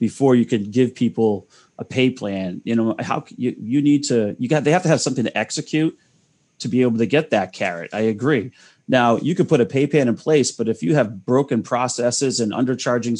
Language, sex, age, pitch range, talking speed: English, male, 30-49, 110-140 Hz, 225 wpm